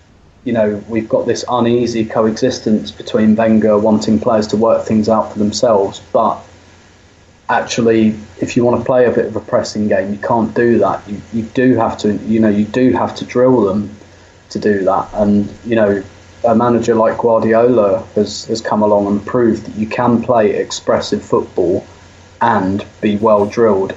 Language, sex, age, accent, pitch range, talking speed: English, male, 20-39, British, 100-115 Hz, 185 wpm